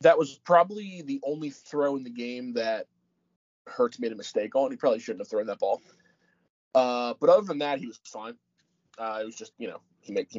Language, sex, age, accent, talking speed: English, male, 20-39, American, 225 wpm